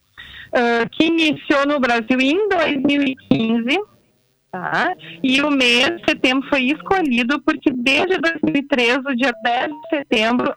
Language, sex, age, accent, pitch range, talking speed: Portuguese, female, 40-59, Brazilian, 200-300 Hz, 130 wpm